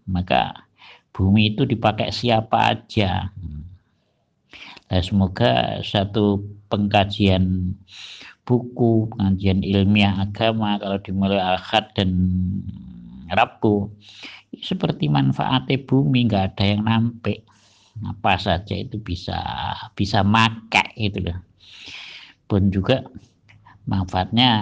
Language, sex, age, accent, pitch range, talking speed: Indonesian, male, 50-69, native, 95-110 Hz, 90 wpm